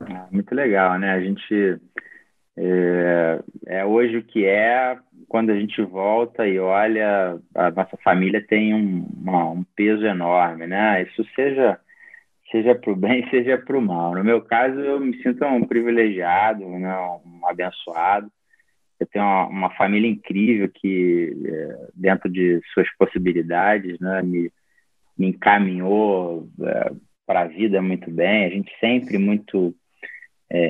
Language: Portuguese